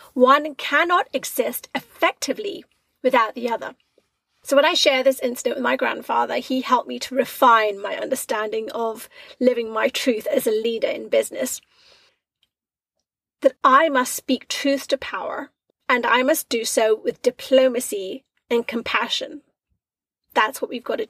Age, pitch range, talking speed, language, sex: 30-49, 245-300 Hz, 150 wpm, English, female